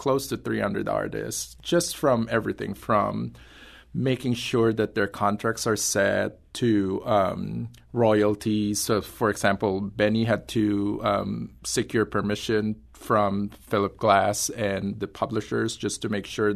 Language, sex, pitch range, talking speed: English, male, 100-120 Hz, 135 wpm